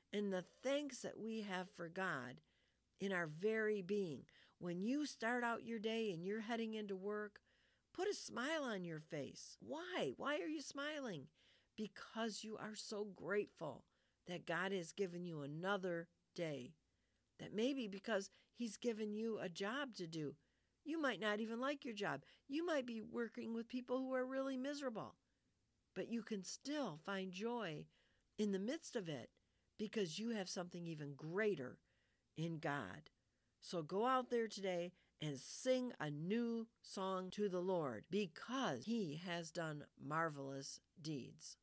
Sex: female